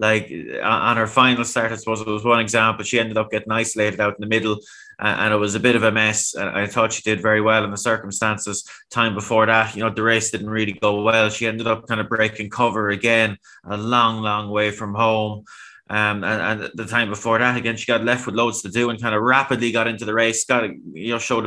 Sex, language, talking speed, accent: male, English, 250 wpm, Irish